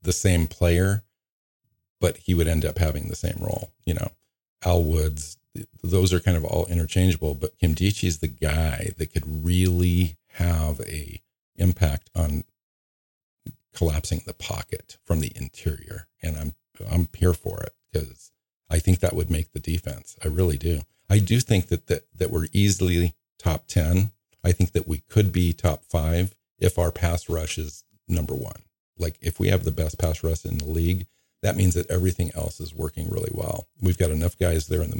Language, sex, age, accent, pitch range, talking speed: English, male, 50-69, American, 80-95 Hz, 190 wpm